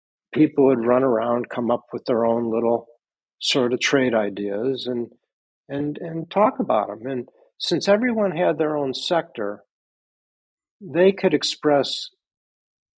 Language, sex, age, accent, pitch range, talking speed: English, male, 60-79, American, 120-165 Hz, 140 wpm